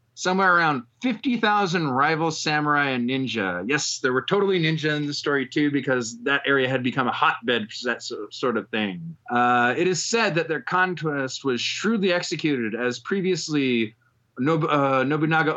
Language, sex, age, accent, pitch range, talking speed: English, male, 30-49, American, 135-180 Hz, 165 wpm